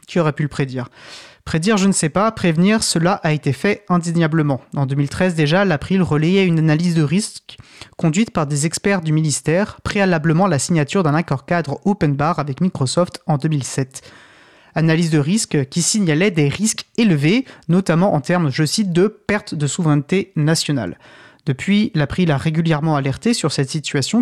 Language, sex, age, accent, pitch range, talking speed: French, male, 30-49, French, 145-185 Hz, 175 wpm